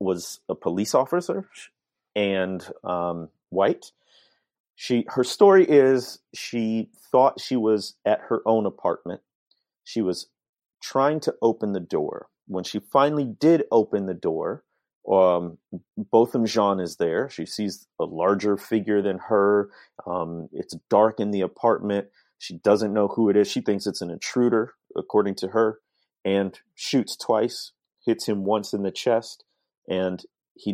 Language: English